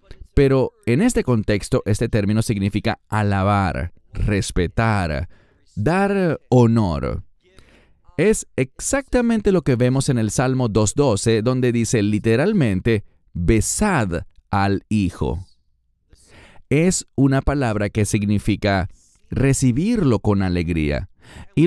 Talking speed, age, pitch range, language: 95 wpm, 40-59, 95-140 Hz, English